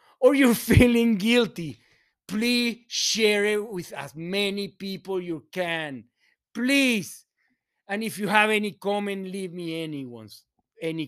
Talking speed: 125 wpm